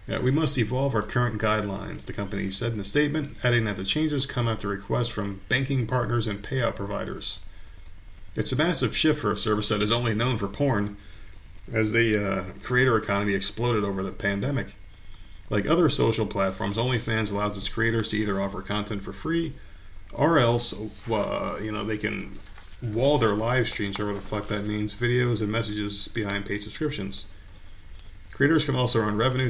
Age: 40-59